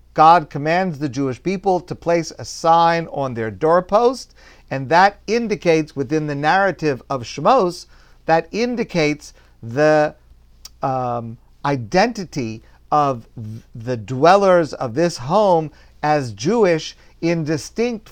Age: 50-69